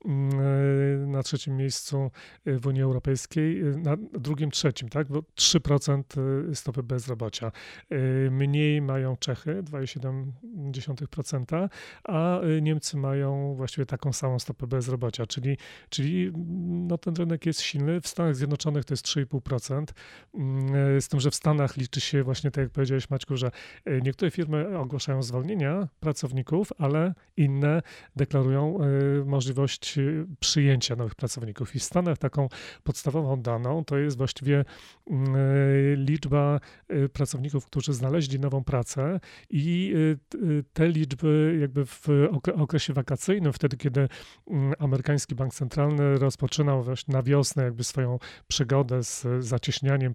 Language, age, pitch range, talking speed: Polish, 30-49, 135-150 Hz, 120 wpm